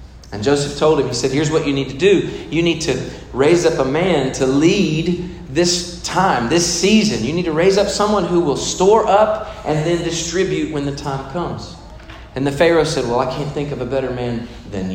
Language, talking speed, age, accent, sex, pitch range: English, 220 wpm, 40-59, American, male, 125-190 Hz